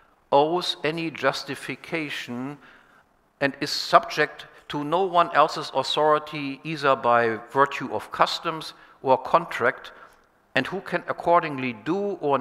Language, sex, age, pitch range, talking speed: English, male, 60-79, 135-160 Hz, 115 wpm